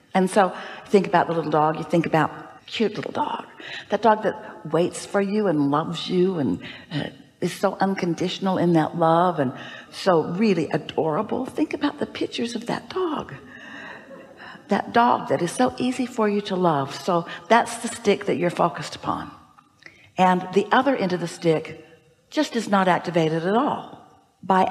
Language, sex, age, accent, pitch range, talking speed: English, female, 60-79, American, 175-220 Hz, 175 wpm